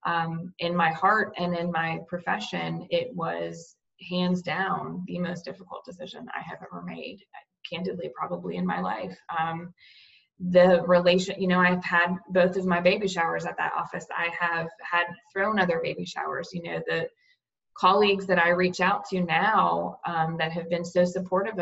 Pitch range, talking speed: 170-185 Hz, 175 wpm